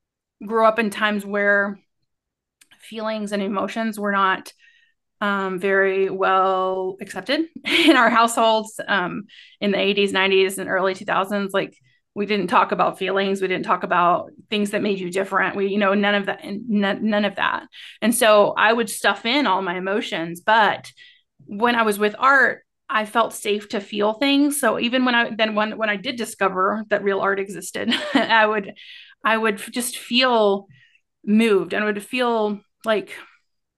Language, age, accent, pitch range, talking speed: English, 30-49, American, 195-240 Hz, 175 wpm